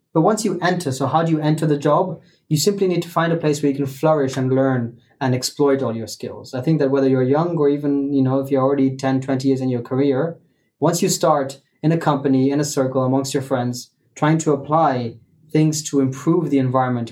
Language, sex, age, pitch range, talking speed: English, male, 20-39, 130-155 Hz, 240 wpm